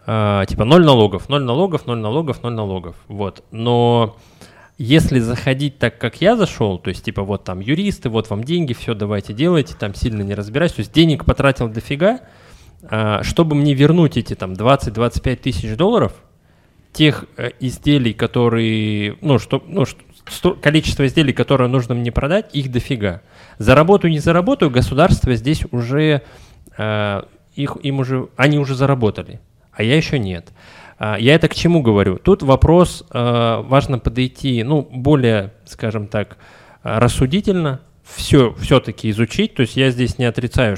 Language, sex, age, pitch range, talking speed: Russian, male, 20-39, 105-145 Hz, 145 wpm